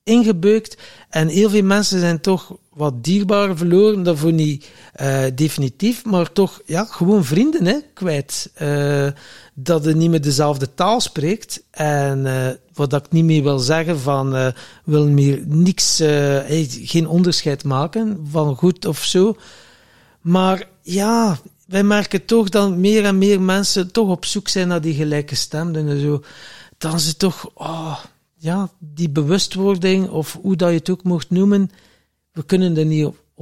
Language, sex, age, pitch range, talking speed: Dutch, male, 60-79, 145-185 Hz, 160 wpm